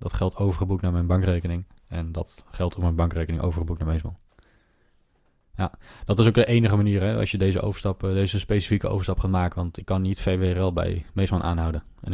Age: 20-39